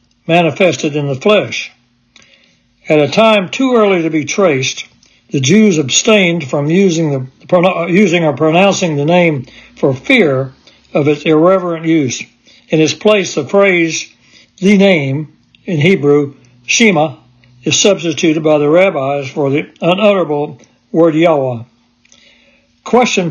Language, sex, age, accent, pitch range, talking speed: English, male, 60-79, American, 135-185 Hz, 130 wpm